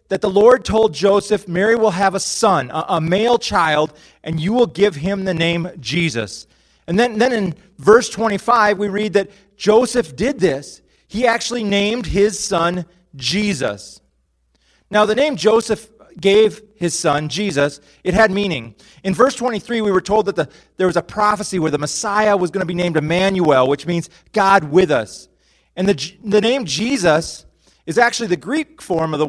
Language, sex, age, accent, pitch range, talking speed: English, male, 30-49, American, 150-210 Hz, 180 wpm